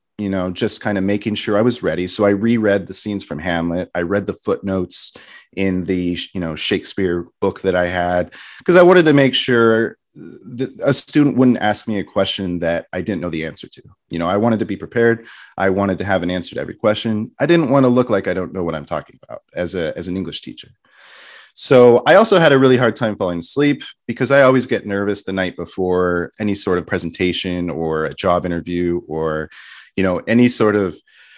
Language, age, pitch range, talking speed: English, 30-49, 90-115 Hz, 225 wpm